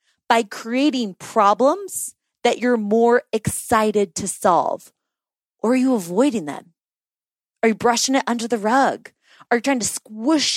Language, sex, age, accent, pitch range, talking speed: English, female, 20-39, American, 230-320 Hz, 150 wpm